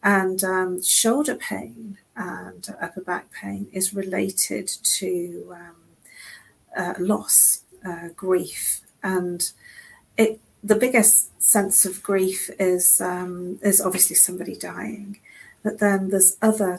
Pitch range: 180-210 Hz